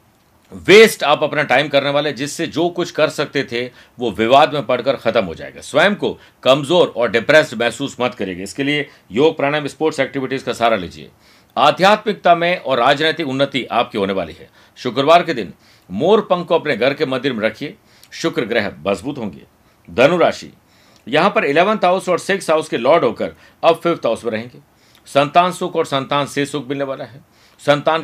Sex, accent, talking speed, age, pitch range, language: male, native, 185 wpm, 50-69, 130-160 Hz, Hindi